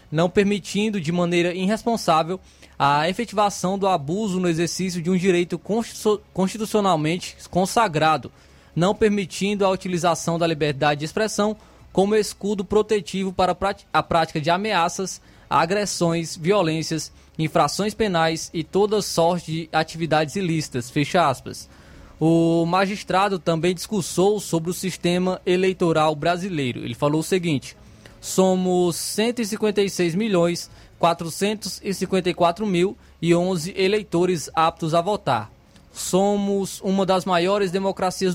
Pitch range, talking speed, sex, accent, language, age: 165-200 Hz, 105 wpm, male, Brazilian, Portuguese, 20-39